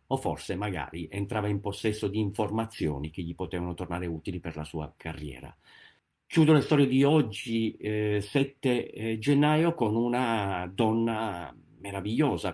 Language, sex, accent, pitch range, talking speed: Italian, male, native, 100-130 Hz, 140 wpm